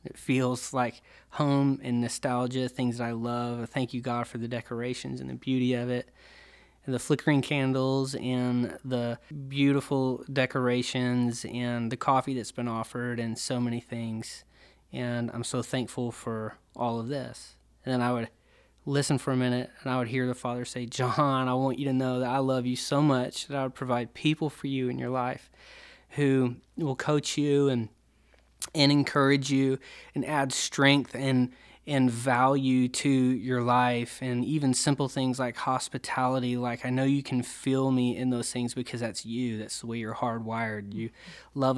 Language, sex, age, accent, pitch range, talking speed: English, male, 20-39, American, 120-130 Hz, 185 wpm